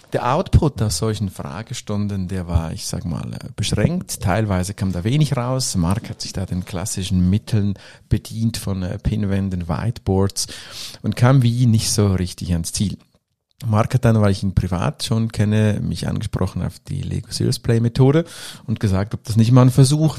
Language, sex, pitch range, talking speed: German, male, 95-120 Hz, 180 wpm